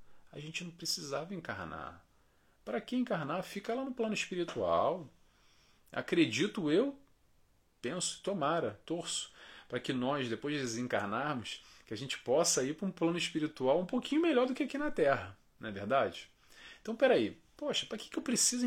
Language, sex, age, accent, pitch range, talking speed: Portuguese, male, 40-59, Brazilian, 120-175 Hz, 170 wpm